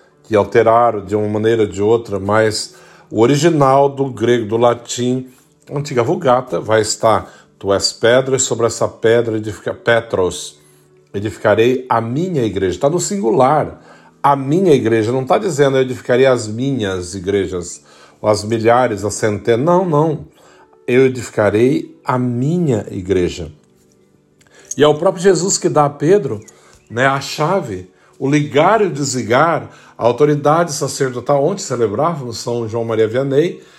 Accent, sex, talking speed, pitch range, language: Brazilian, male, 145 wpm, 110-160 Hz, Portuguese